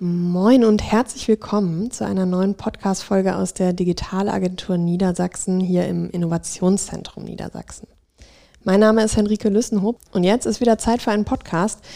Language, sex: German, female